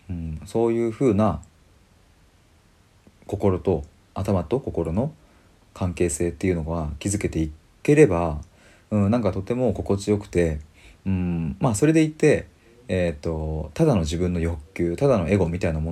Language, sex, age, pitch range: Japanese, male, 40-59, 80-100 Hz